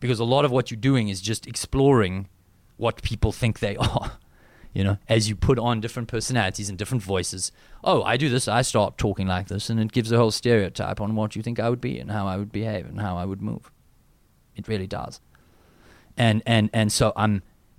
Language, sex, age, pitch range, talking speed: English, male, 30-49, 95-115 Hz, 225 wpm